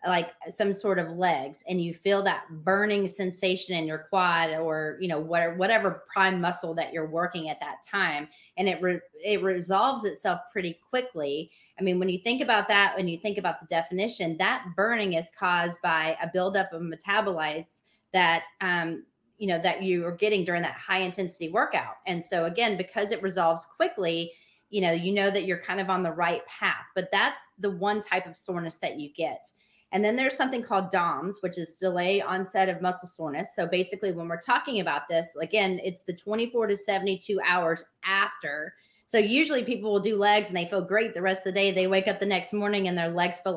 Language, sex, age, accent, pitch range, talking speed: English, female, 30-49, American, 170-200 Hz, 210 wpm